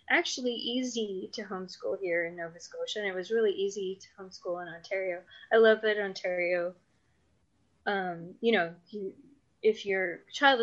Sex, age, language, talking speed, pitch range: female, 20-39, English, 165 wpm, 180-245 Hz